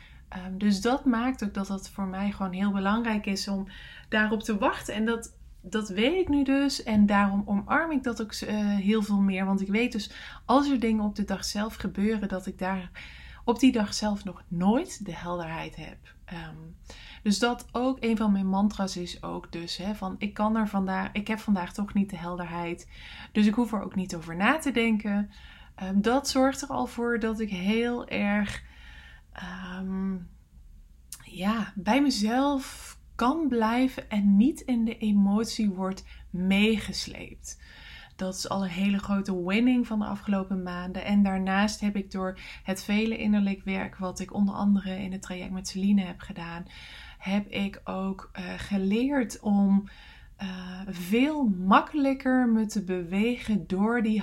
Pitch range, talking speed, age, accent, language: 190-225 Hz, 165 wpm, 20-39, Dutch, English